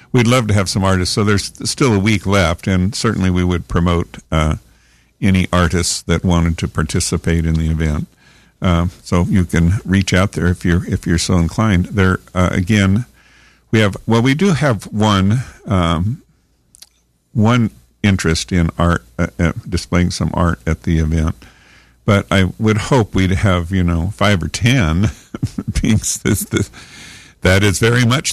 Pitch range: 85-110 Hz